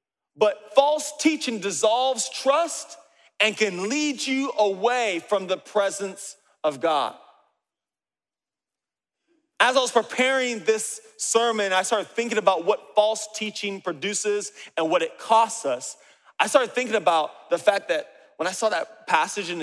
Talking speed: 145 wpm